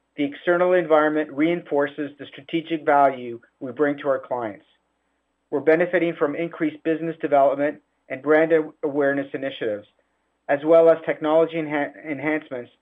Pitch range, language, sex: 140-160 Hz, English, male